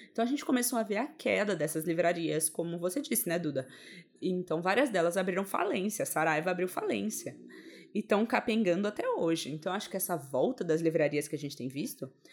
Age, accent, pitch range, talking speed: 20-39, Brazilian, 160-210 Hz, 195 wpm